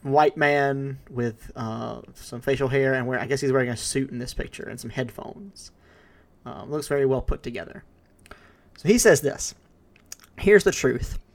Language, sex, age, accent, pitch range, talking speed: English, male, 20-39, American, 130-155 Hz, 175 wpm